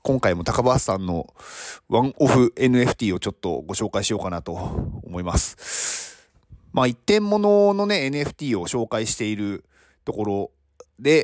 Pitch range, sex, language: 105-165 Hz, male, Japanese